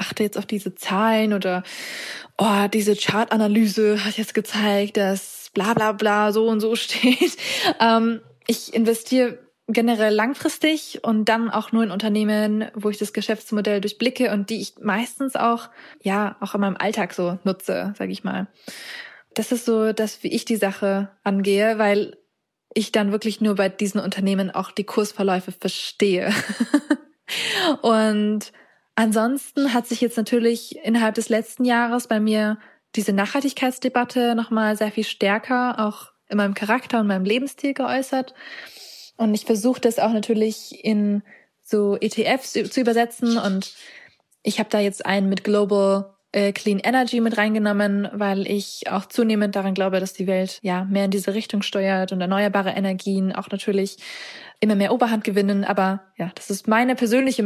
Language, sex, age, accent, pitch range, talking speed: German, female, 20-39, German, 200-230 Hz, 160 wpm